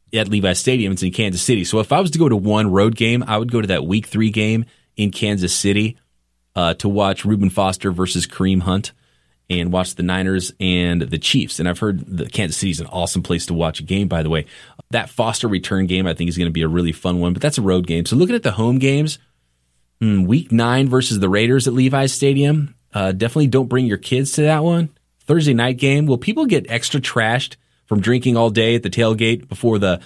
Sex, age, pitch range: male, 30-49, 90-115 Hz